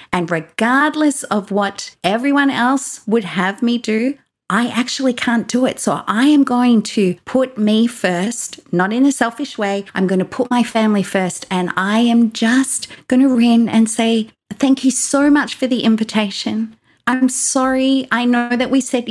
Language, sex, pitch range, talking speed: English, female, 200-255 Hz, 180 wpm